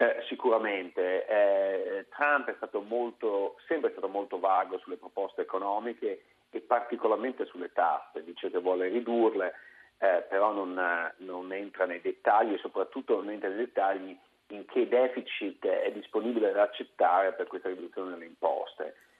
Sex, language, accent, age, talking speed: male, Italian, native, 40-59, 150 wpm